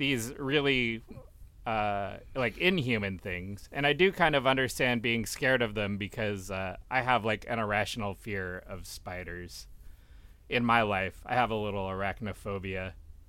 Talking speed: 155 wpm